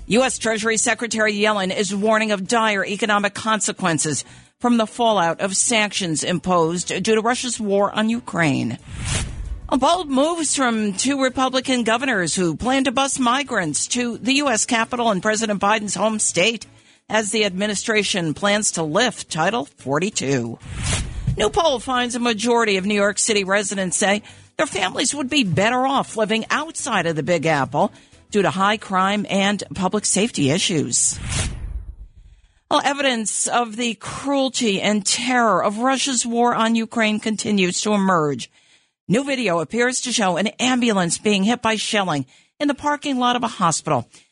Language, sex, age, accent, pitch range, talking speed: English, female, 50-69, American, 190-240 Hz, 155 wpm